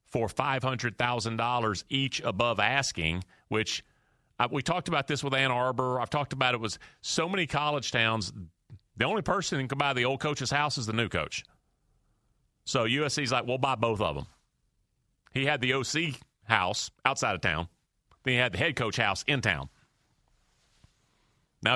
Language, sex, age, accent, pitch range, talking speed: English, male, 40-59, American, 120-180 Hz, 175 wpm